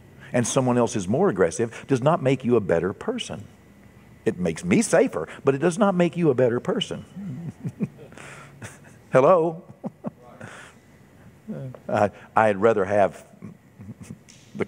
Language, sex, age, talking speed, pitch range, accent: English, male, 60-79, 130 wpm, 105-135 Hz, American